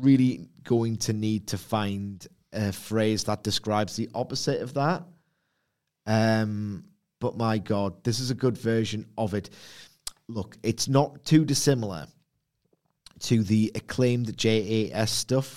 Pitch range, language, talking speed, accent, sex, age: 105-135 Hz, English, 135 wpm, British, male, 30-49